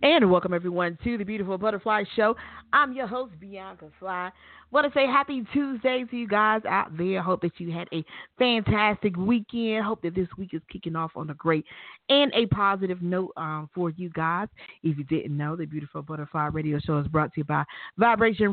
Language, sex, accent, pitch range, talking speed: English, female, American, 155-200 Hz, 205 wpm